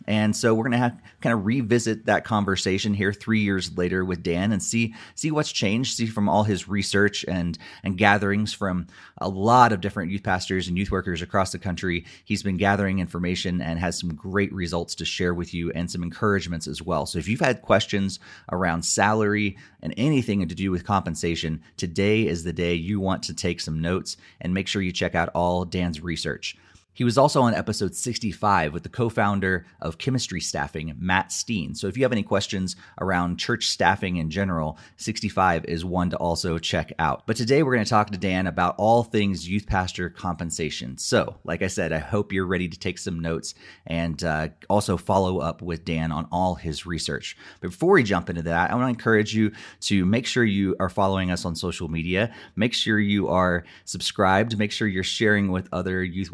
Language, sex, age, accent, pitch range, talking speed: English, male, 30-49, American, 85-105 Hz, 205 wpm